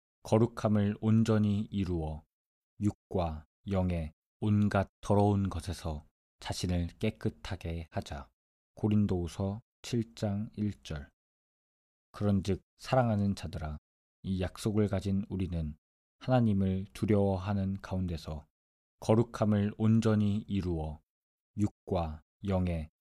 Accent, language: native, Korean